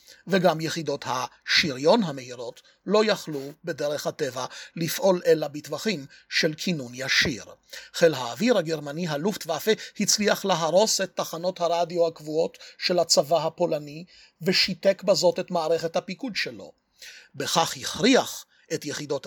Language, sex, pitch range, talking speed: Hebrew, male, 160-195 Hz, 120 wpm